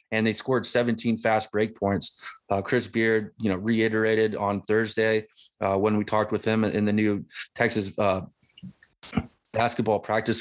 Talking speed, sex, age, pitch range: 160 wpm, male, 20-39, 105-115 Hz